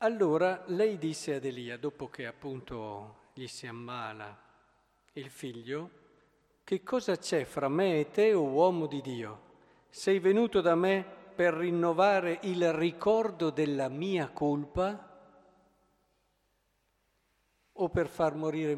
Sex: male